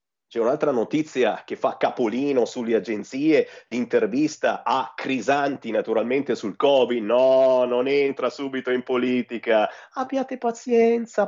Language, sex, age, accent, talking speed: Italian, male, 30-49, native, 115 wpm